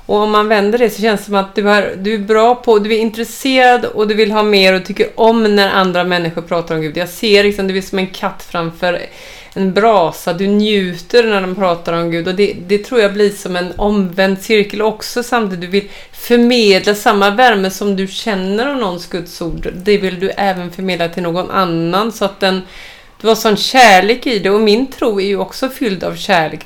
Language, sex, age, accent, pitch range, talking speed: Swedish, female, 30-49, native, 185-235 Hz, 225 wpm